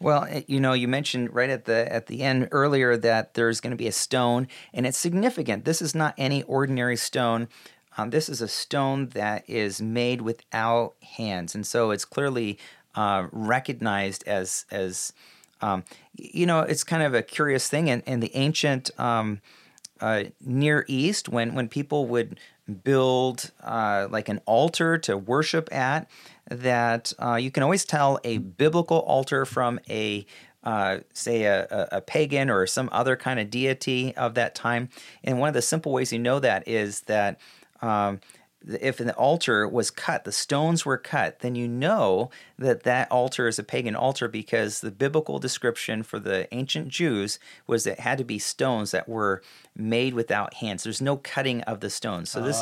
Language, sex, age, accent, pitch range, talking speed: English, male, 40-59, American, 110-140 Hz, 180 wpm